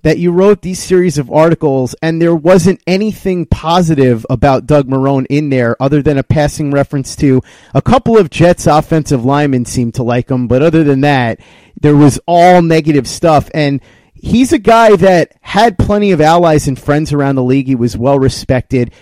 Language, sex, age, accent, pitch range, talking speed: English, male, 30-49, American, 130-165 Hz, 185 wpm